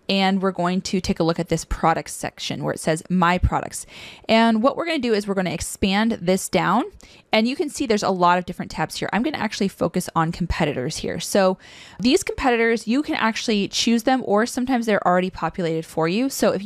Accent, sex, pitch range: American, female, 170-215 Hz